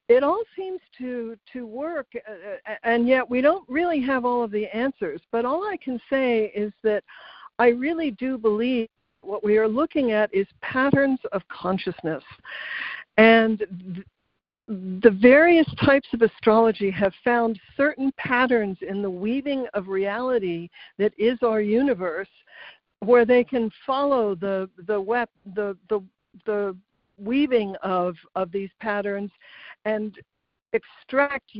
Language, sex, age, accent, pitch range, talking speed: English, female, 60-79, American, 200-255 Hz, 140 wpm